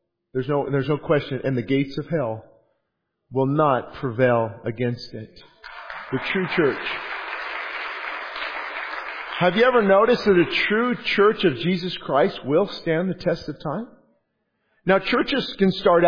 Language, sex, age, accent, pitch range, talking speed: English, male, 50-69, American, 155-200 Hz, 145 wpm